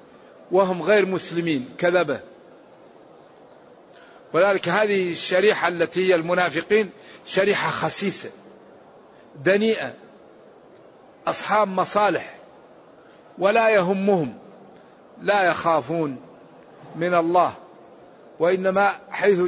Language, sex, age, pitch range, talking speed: Arabic, male, 50-69, 165-195 Hz, 70 wpm